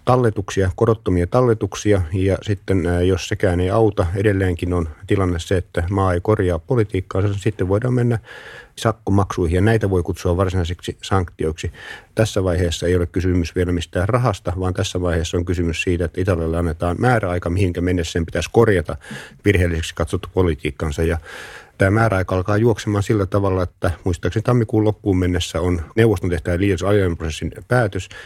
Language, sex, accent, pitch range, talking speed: Finnish, male, native, 85-105 Hz, 155 wpm